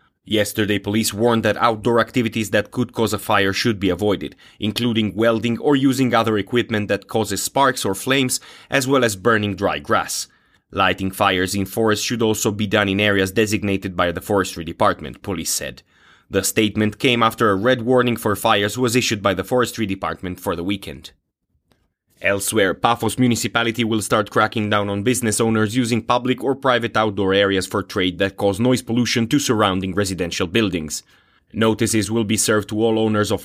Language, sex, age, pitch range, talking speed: English, male, 30-49, 100-120 Hz, 180 wpm